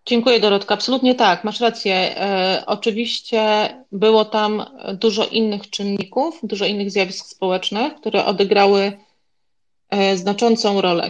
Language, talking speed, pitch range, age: Polish, 110 wpm, 195-220 Hz, 30-49